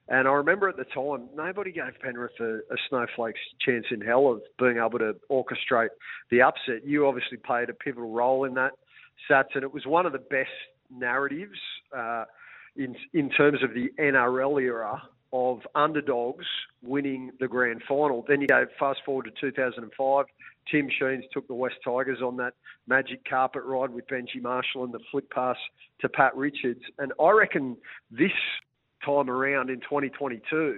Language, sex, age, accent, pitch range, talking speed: English, male, 50-69, Australian, 125-140 Hz, 175 wpm